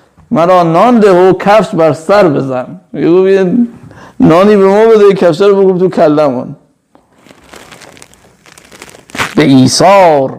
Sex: male